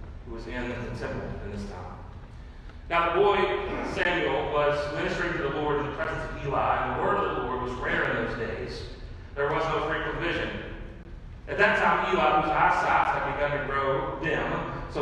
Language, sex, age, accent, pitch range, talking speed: English, male, 40-59, American, 120-185 Hz, 200 wpm